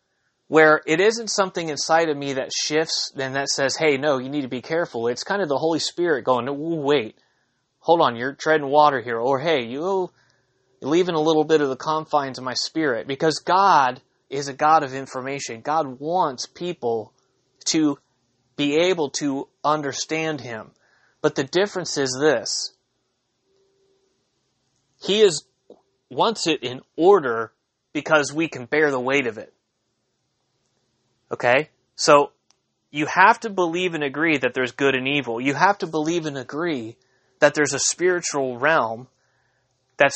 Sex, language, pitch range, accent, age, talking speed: male, English, 130-170 Hz, American, 30-49, 160 wpm